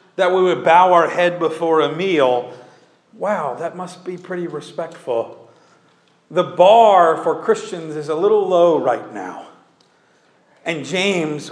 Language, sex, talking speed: English, male, 140 wpm